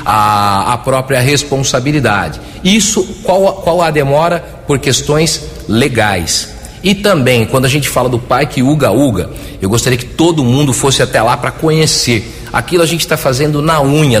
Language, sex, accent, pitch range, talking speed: Portuguese, male, Brazilian, 130-170 Hz, 165 wpm